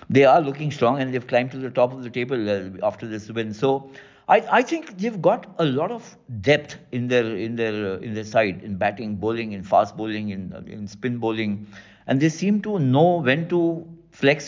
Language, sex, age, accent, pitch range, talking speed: English, male, 60-79, Indian, 115-150 Hz, 215 wpm